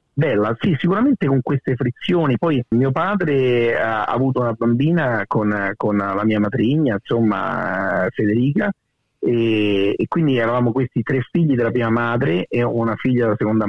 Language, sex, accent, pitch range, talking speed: Italian, male, native, 110-135 Hz, 155 wpm